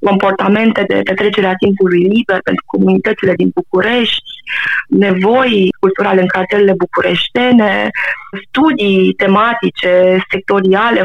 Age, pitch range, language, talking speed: 20-39, 185-225 Hz, Romanian, 100 wpm